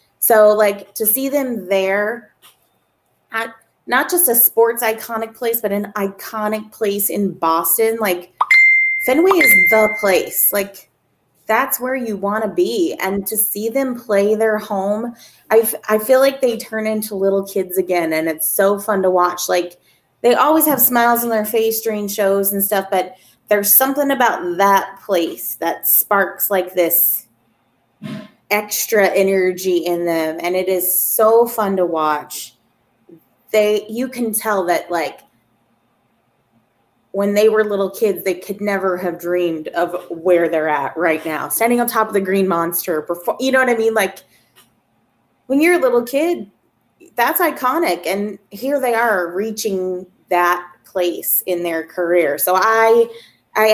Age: 20-39